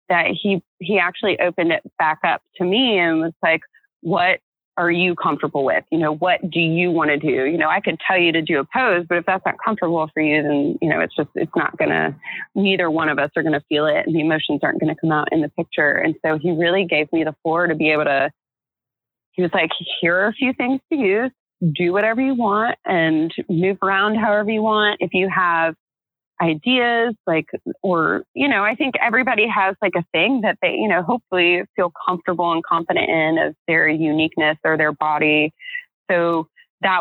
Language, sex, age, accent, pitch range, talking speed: English, female, 30-49, American, 155-190 Hz, 215 wpm